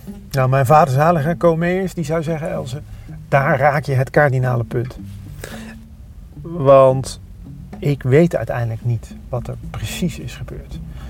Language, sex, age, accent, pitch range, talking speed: Dutch, male, 40-59, Dutch, 110-140 Hz, 135 wpm